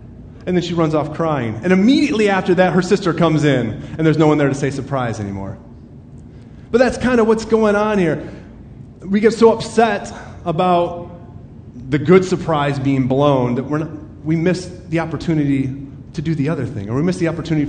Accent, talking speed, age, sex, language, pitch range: American, 195 wpm, 30-49, male, English, 120-165 Hz